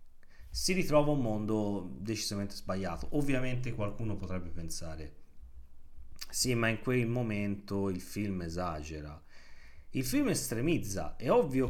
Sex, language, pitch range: male, Italian, 80-125 Hz